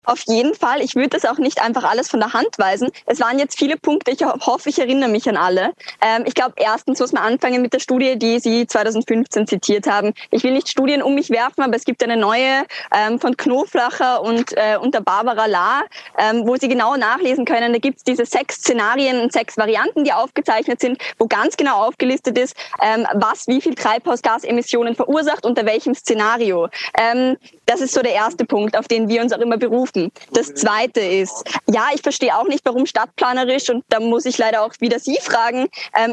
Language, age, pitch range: German, 20-39, 225-265 Hz